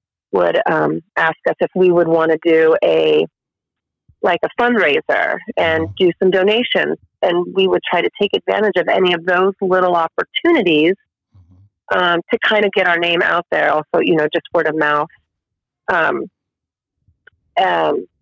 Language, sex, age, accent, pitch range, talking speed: English, female, 30-49, American, 160-205 Hz, 160 wpm